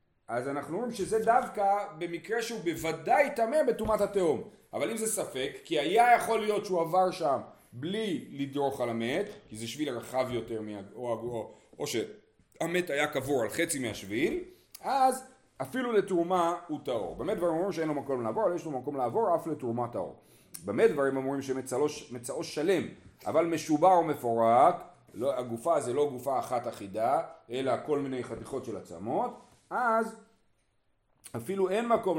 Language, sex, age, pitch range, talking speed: Hebrew, male, 40-59, 130-210 Hz, 155 wpm